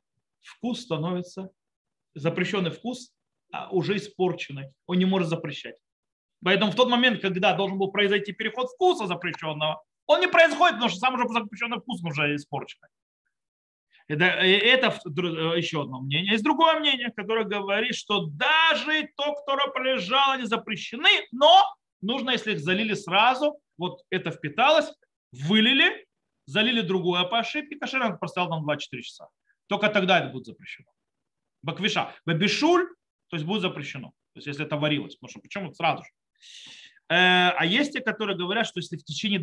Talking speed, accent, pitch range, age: 150 wpm, native, 155-230 Hz, 30-49